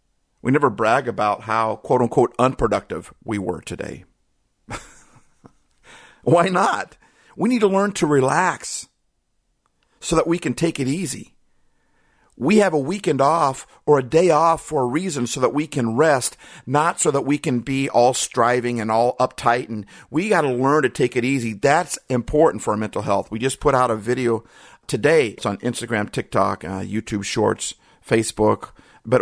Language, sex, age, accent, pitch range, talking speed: English, male, 50-69, American, 100-125 Hz, 170 wpm